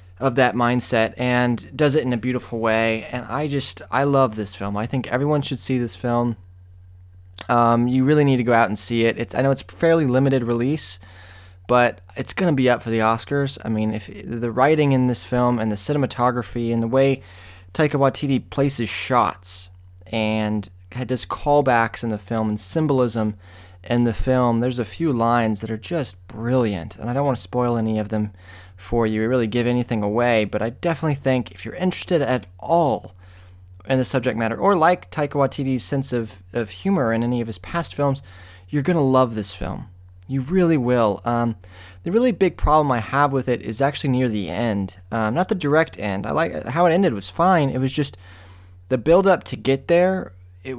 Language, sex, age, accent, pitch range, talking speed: English, male, 20-39, American, 100-135 Hz, 205 wpm